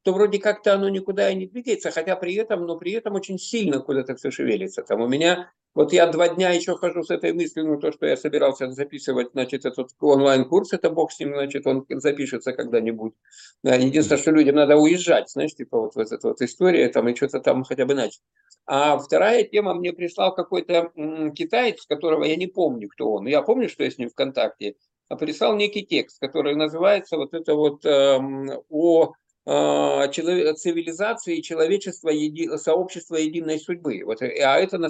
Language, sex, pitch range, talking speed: Russian, male, 145-185 Hz, 185 wpm